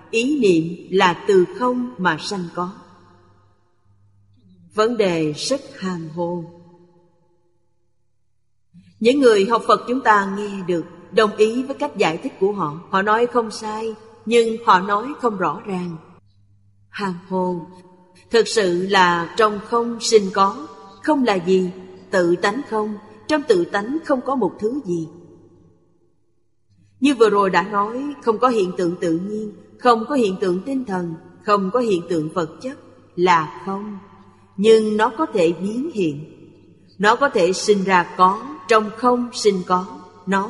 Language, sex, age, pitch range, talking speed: Vietnamese, female, 30-49, 170-230 Hz, 155 wpm